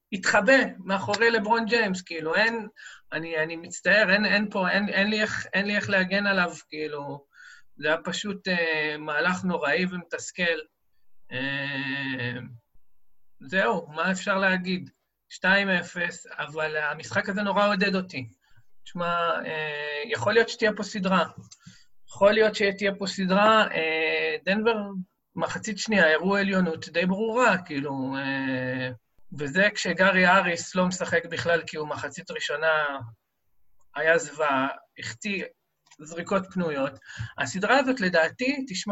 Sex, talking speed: male, 125 wpm